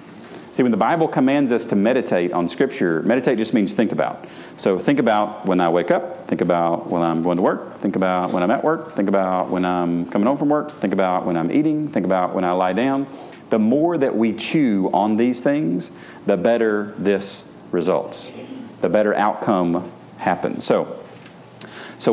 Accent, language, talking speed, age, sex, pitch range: American, English, 195 wpm, 40-59, male, 95-130 Hz